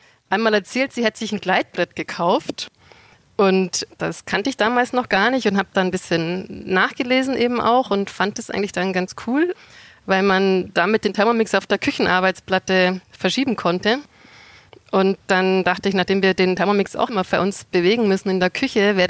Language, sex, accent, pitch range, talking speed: German, female, German, 185-225 Hz, 185 wpm